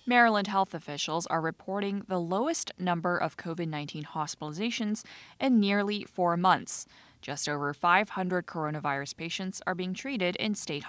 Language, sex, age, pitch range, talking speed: English, female, 20-39, 170-235 Hz, 140 wpm